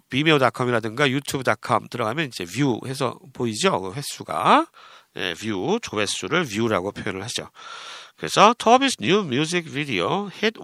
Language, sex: Korean, male